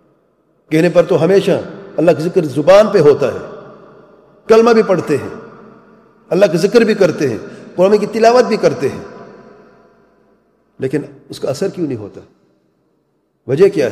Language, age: English, 50-69